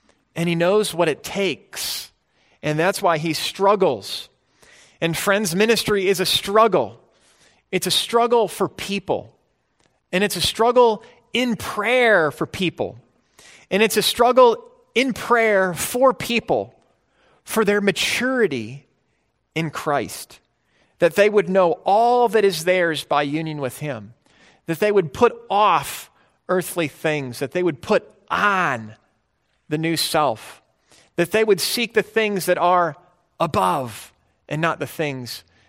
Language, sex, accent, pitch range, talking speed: English, male, American, 160-230 Hz, 140 wpm